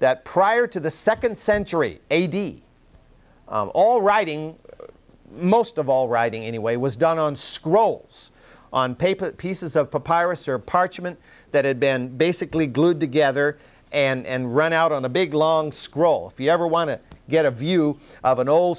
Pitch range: 135-175 Hz